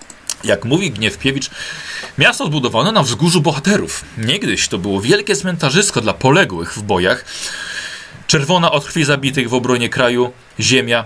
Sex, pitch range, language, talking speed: male, 105-140 Hz, Polish, 135 wpm